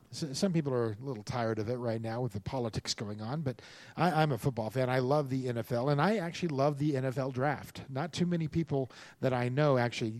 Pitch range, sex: 115-145 Hz, male